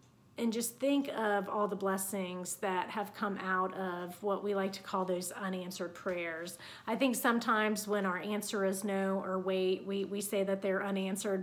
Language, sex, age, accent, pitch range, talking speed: English, female, 30-49, American, 190-220 Hz, 190 wpm